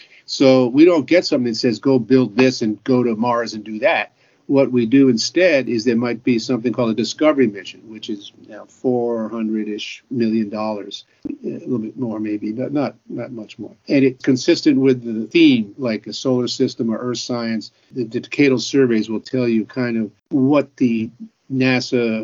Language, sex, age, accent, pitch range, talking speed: English, male, 50-69, American, 115-135 Hz, 195 wpm